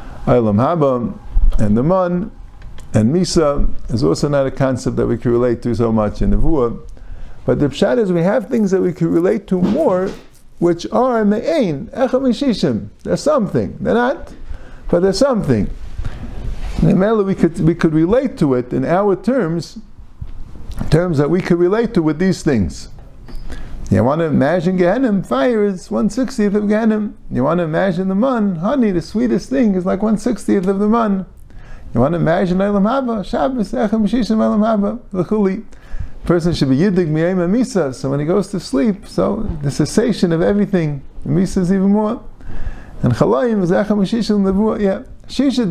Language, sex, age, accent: English, male, 50-69, American